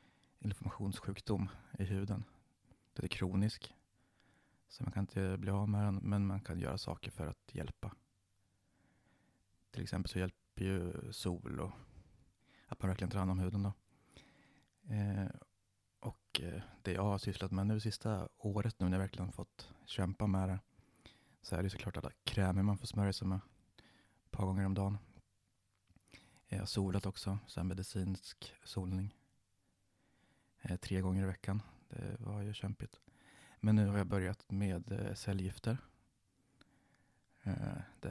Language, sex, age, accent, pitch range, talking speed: Swedish, male, 30-49, native, 95-105 Hz, 145 wpm